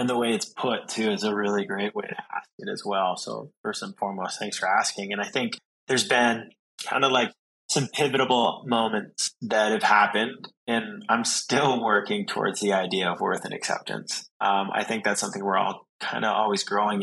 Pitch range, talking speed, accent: 105-120 Hz, 210 wpm, American